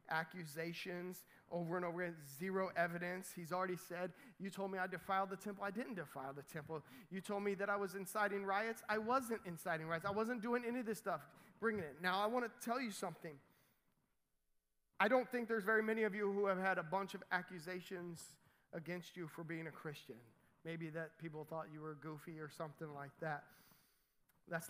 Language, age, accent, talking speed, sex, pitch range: English, 30-49, American, 200 wpm, male, 160-195 Hz